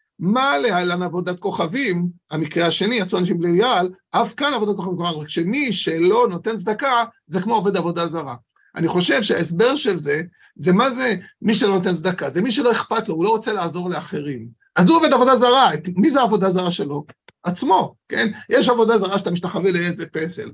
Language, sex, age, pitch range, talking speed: Hebrew, male, 50-69, 180-235 Hz, 190 wpm